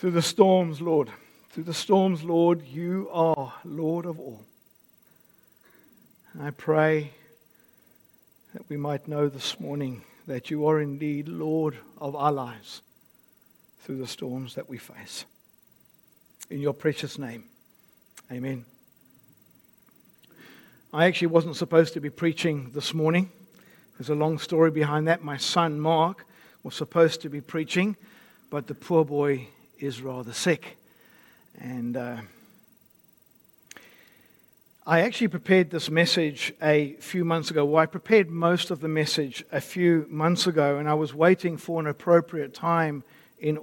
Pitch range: 145-170 Hz